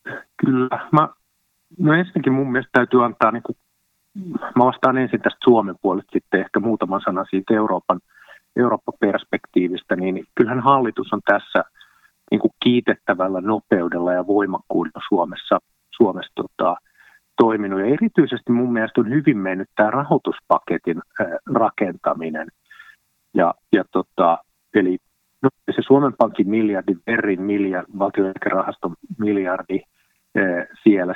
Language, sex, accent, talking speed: Finnish, male, native, 120 wpm